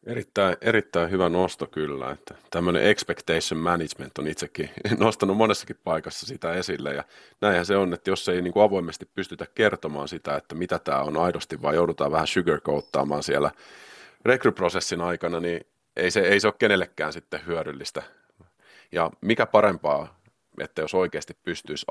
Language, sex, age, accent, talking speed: Finnish, male, 30-49, native, 155 wpm